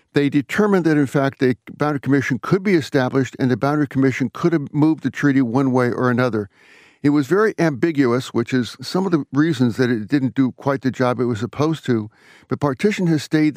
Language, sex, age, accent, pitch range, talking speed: English, male, 60-79, American, 130-155 Hz, 215 wpm